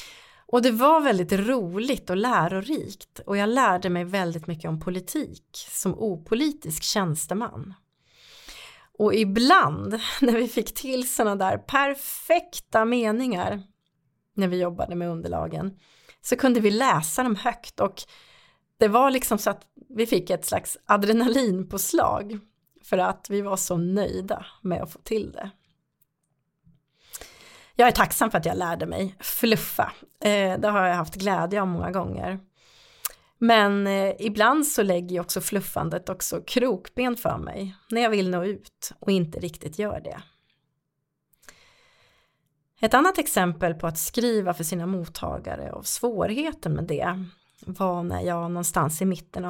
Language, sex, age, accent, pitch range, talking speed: Swedish, female, 30-49, native, 175-235 Hz, 145 wpm